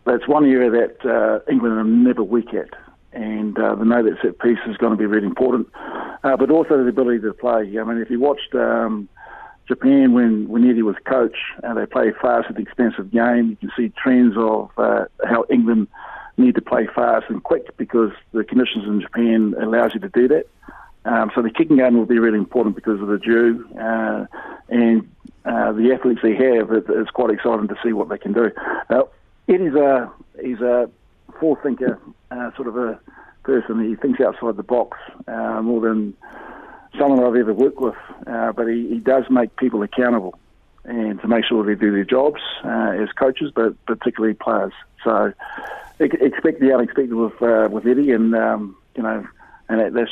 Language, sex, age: English, male, 50-69